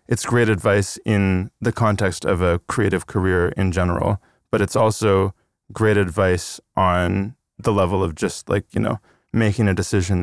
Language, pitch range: English, 90-110 Hz